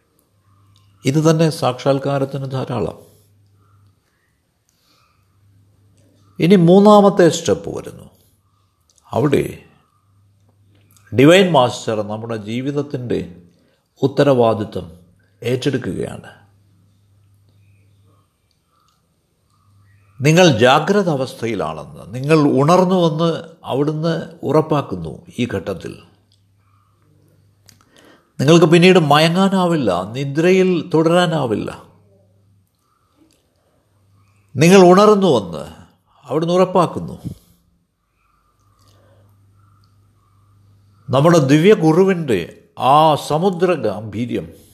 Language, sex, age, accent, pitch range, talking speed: Malayalam, male, 60-79, native, 100-150 Hz, 50 wpm